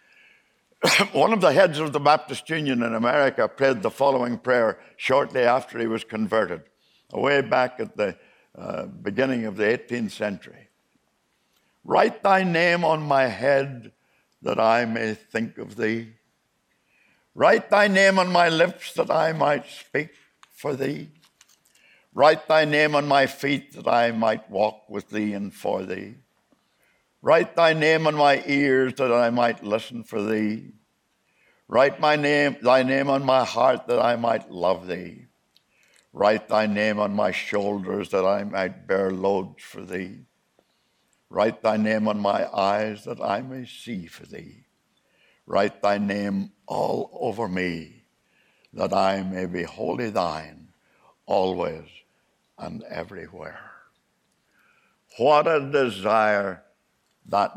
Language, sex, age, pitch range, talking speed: English, male, 60-79, 105-140 Hz, 145 wpm